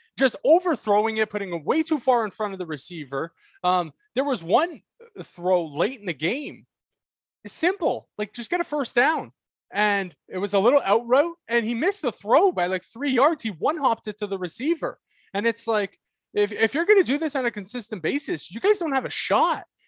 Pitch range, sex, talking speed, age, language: 170-265 Hz, male, 215 wpm, 20-39, English